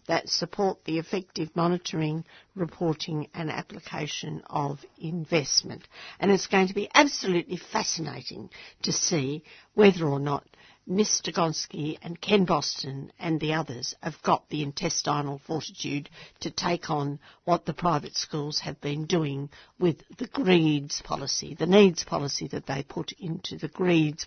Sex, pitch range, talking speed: female, 155-190 Hz, 145 wpm